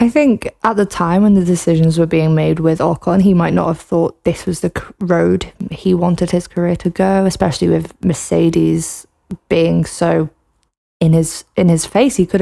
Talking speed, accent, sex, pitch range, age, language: 195 wpm, British, female, 165-195 Hz, 20-39, English